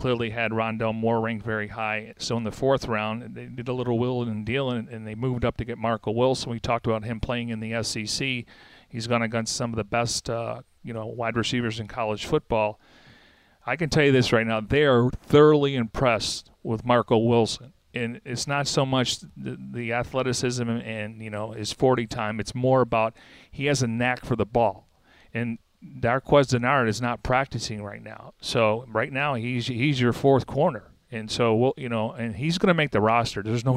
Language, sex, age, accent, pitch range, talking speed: English, male, 40-59, American, 110-130 Hz, 210 wpm